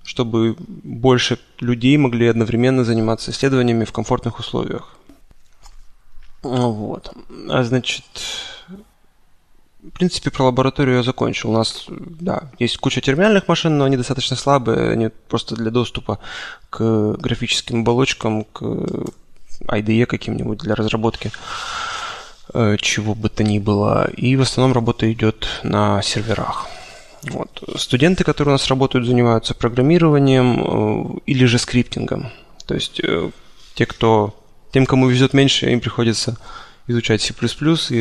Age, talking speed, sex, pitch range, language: 20-39, 125 wpm, male, 115-135 Hz, Russian